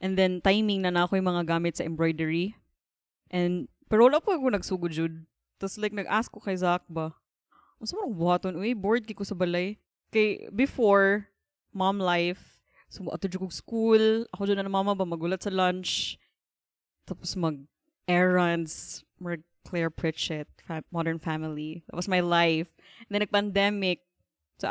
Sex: female